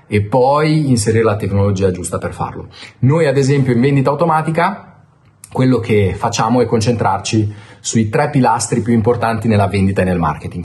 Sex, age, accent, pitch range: male, 30-49, native, 100-135 Hz